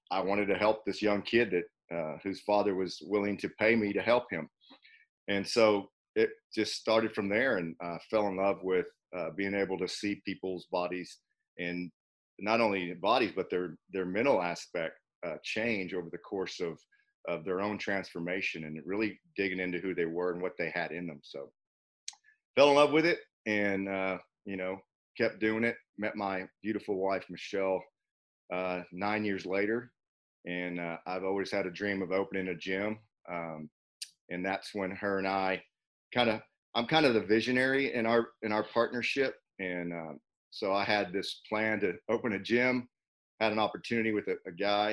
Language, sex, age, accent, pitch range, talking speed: English, male, 40-59, American, 90-105 Hz, 190 wpm